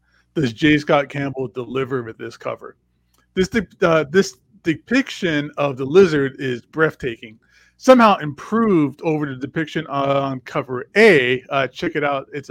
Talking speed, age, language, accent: 150 wpm, 30-49, English, American